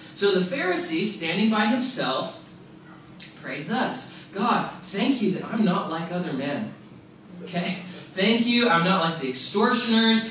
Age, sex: 20-39, male